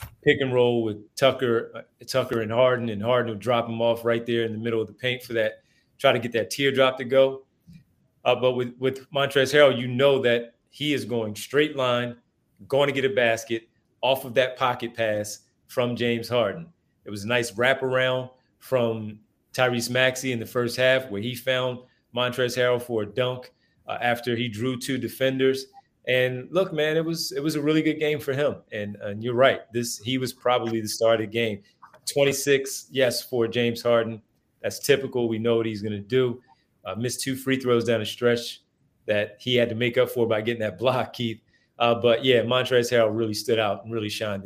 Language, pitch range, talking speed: English, 115-135 Hz, 205 wpm